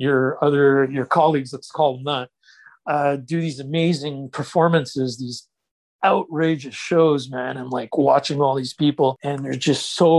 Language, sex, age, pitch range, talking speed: English, male, 50-69, 140-175 Hz, 160 wpm